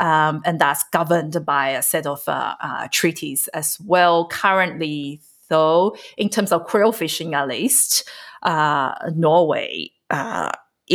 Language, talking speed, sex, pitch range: English, 135 wpm, female, 160-205 Hz